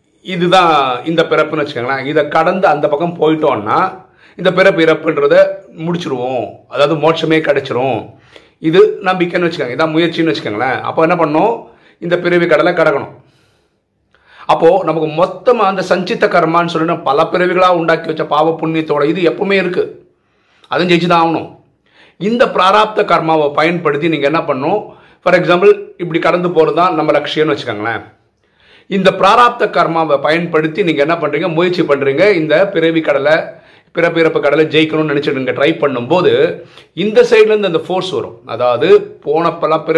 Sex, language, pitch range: male, Tamil, 155-185 Hz